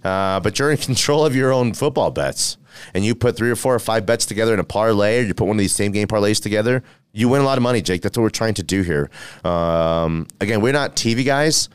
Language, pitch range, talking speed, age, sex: English, 95-120 Hz, 270 wpm, 30-49, male